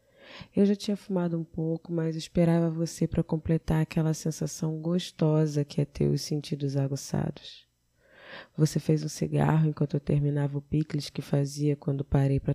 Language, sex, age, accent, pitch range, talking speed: Portuguese, female, 20-39, Brazilian, 145-170 Hz, 165 wpm